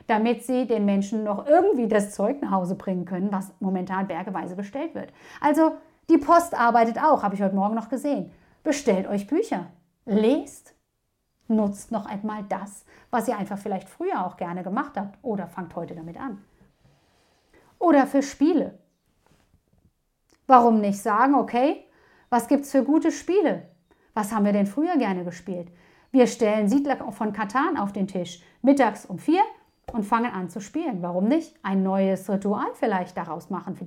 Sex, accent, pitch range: female, German, 195-265 Hz